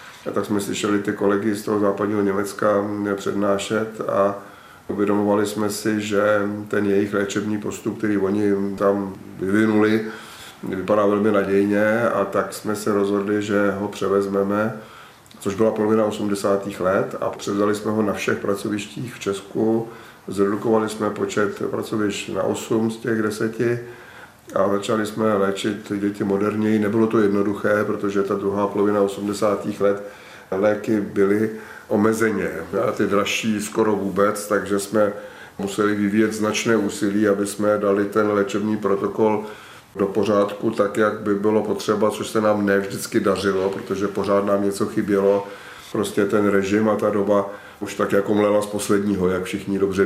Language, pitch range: Czech, 100-105 Hz